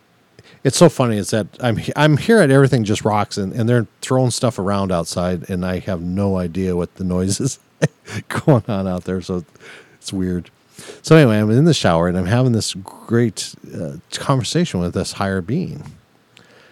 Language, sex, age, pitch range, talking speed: English, male, 50-69, 95-125 Hz, 185 wpm